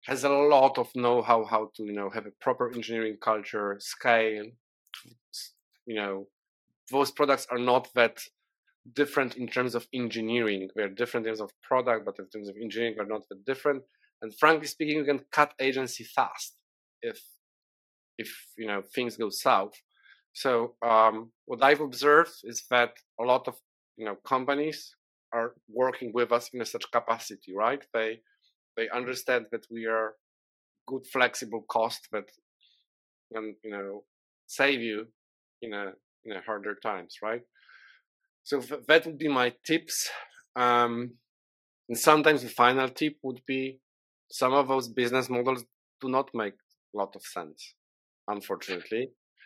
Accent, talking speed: Polish, 155 wpm